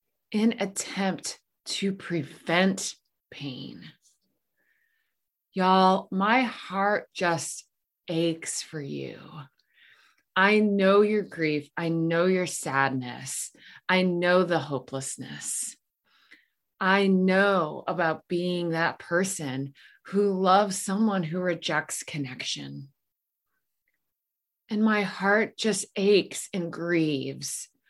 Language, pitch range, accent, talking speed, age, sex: English, 160-200 Hz, American, 90 wpm, 20-39, female